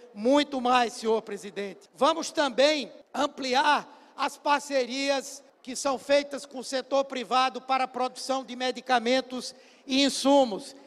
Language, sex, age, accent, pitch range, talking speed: Portuguese, male, 60-79, Brazilian, 255-280 Hz, 125 wpm